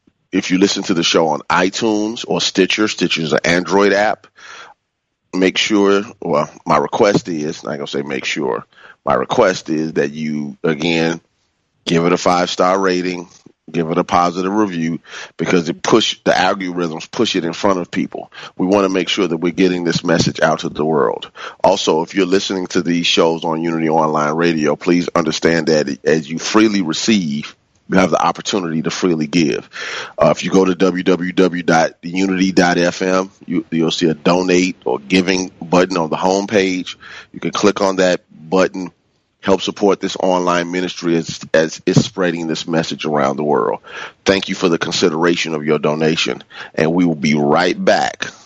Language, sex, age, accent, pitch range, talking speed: English, male, 30-49, American, 80-95 Hz, 175 wpm